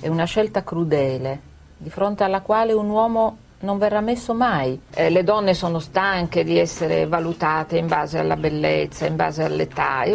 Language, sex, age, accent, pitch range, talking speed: Italian, female, 40-59, native, 150-195 Hz, 175 wpm